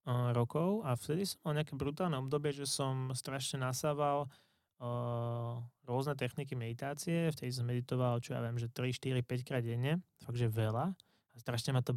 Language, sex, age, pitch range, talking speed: Slovak, male, 20-39, 120-135 Hz, 165 wpm